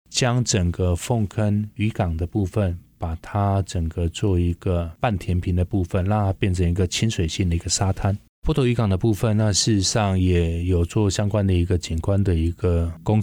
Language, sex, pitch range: Chinese, male, 90-110 Hz